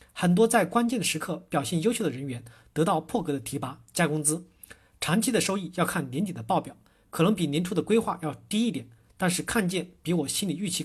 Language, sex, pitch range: Chinese, male, 150-210 Hz